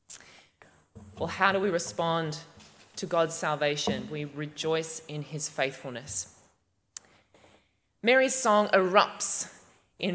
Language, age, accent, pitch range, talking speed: English, 20-39, Australian, 160-225 Hz, 110 wpm